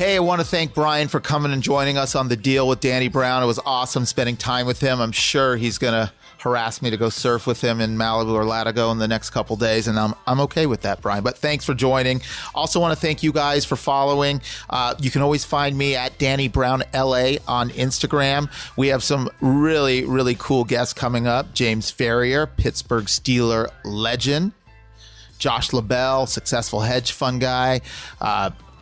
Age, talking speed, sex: 30-49, 200 wpm, male